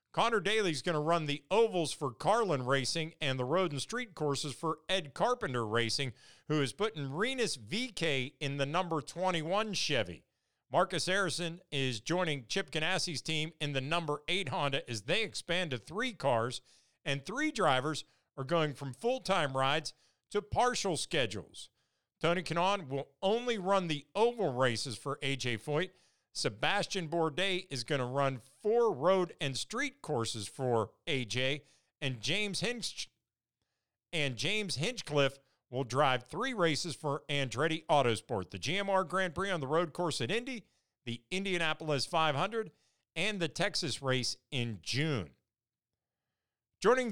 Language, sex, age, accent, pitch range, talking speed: English, male, 50-69, American, 135-195 Hz, 150 wpm